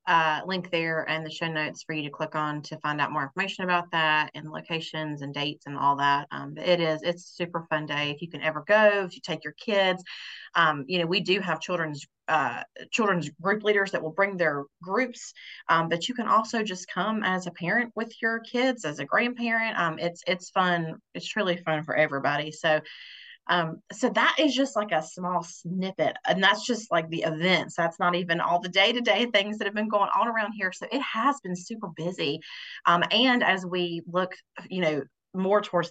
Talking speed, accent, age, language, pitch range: 225 wpm, American, 30-49, English, 160-210 Hz